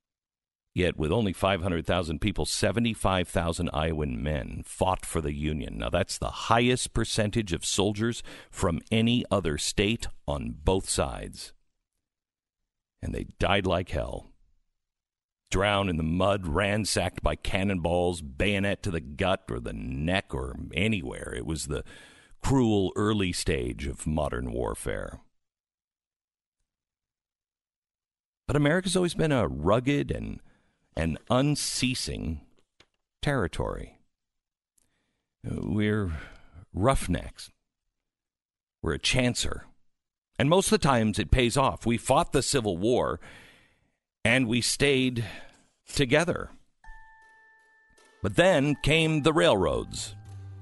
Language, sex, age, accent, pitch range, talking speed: English, male, 50-69, American, 85-120 Hz, 110 wpm